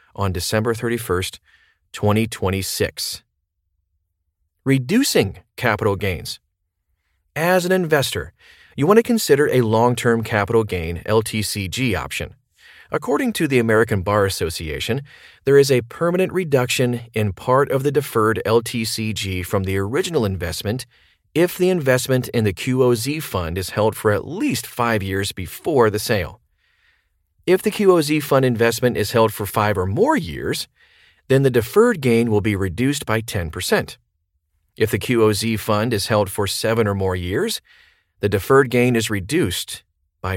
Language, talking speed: English, 145 wpm